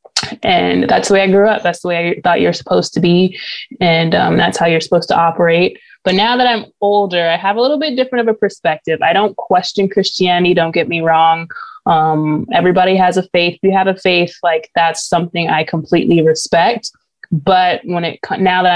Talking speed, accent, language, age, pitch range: 215 wpm, American, English, 20-39, 170-195 Hz